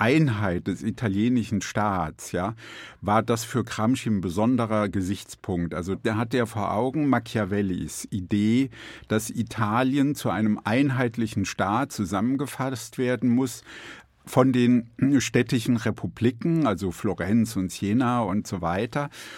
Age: 50-69